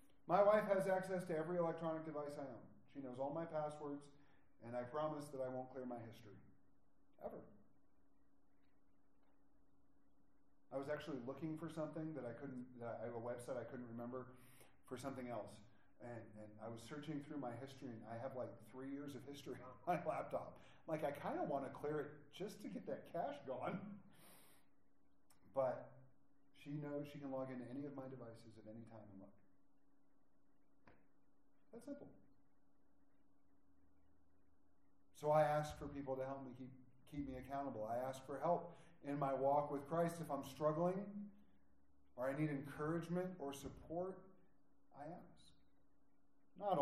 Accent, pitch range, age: American, 120-155 Hz, 40-59